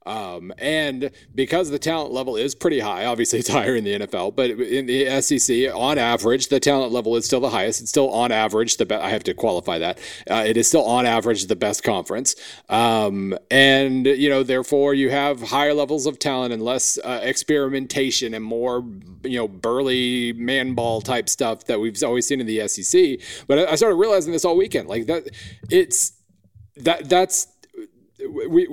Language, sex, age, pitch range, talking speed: English, male, 40-59, 120-150 Hz, 190 wpm